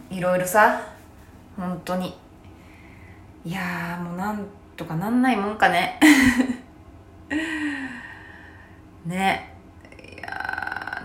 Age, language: 20-39, Japanese